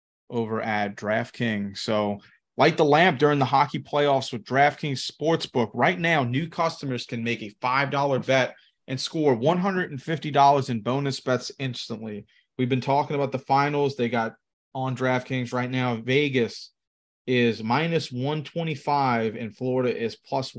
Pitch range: 115-145 Hz